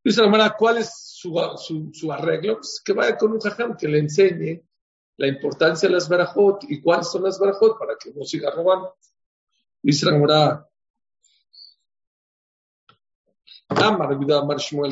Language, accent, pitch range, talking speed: English, Mexican, 145-195 Hz, 115 wpm